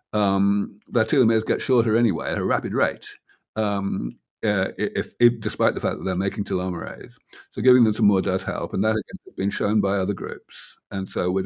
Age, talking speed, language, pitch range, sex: 50-69, 210 wpm, English, 95-110 Hz, male